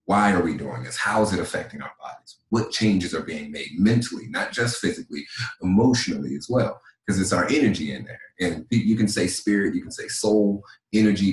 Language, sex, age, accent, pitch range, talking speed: English, male, 30-49, American, 90-115 Hz, 205 wpm